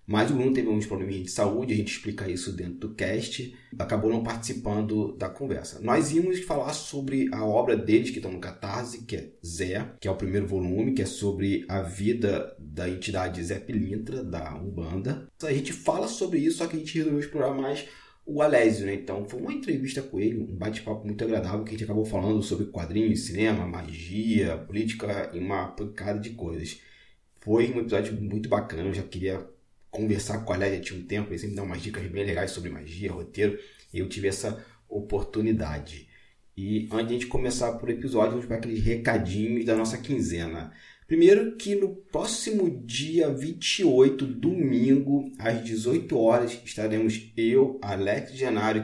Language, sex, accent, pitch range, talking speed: Portuguese, male, Brazilian, 95-125 Hz, 185 wpm